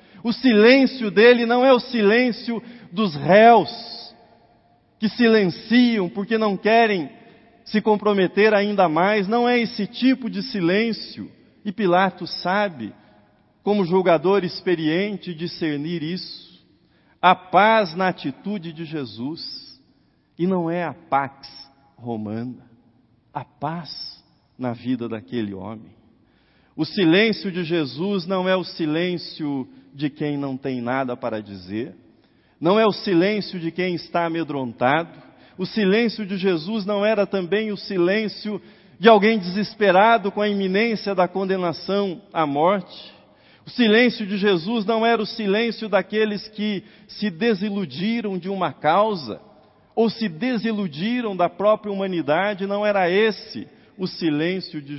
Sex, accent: male, Brazilian